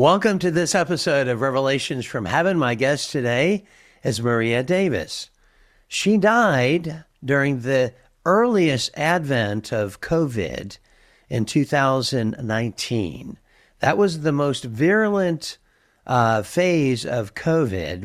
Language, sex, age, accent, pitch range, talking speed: English, male, 50-69, American, 115-165 Hz, 110 wpm